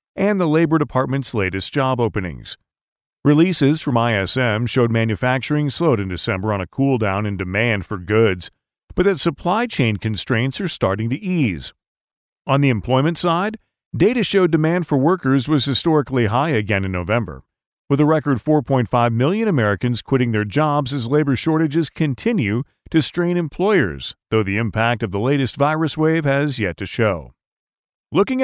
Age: 40-59